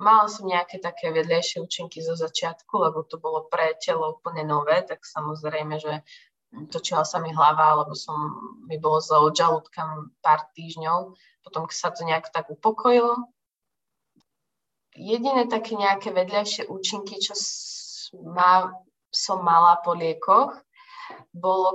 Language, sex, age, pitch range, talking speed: Slovak, female, 20-39, 170-200 Hz, 135 wpm